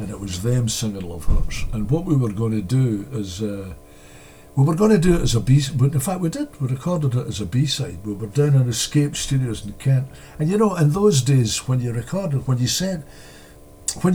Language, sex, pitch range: English, male, 110-145 Hz